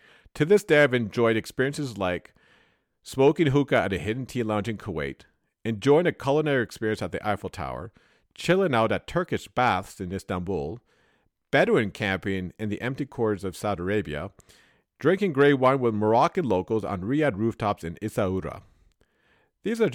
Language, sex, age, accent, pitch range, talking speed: English, male, 50-69, American, 95-140 Hz, 160 wpm